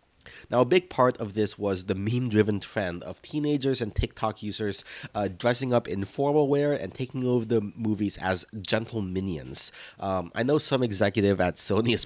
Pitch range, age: 95-120 Hz, 30-49